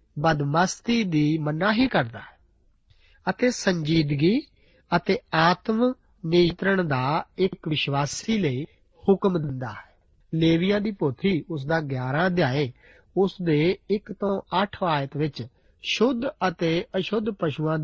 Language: Punjabi